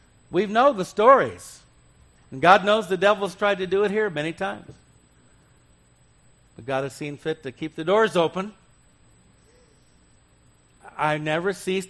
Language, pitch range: English, 115-190 Hz